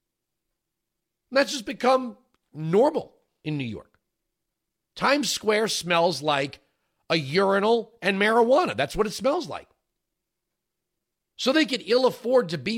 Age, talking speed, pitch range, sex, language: 40-59, 125 wpm, 170-225 Hz, male, English